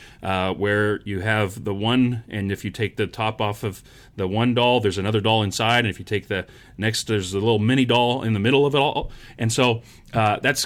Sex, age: male, 30-49